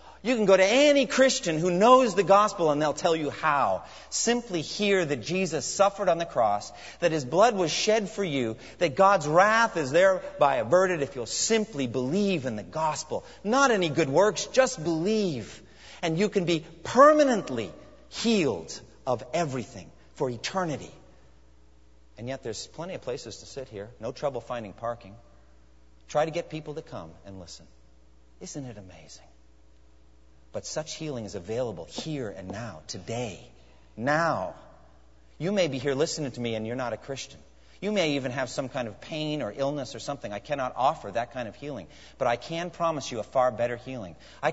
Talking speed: 180 wpm